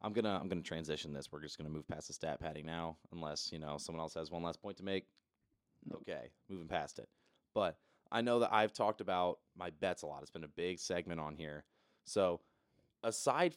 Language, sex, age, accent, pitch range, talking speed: English, male, 30-49, American, 90-125 Hz, 235 wpm